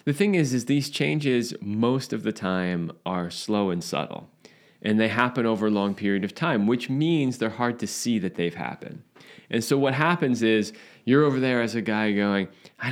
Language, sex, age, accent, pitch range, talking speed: English, male, 20-39, American, 110-150 Hz, 210 wpm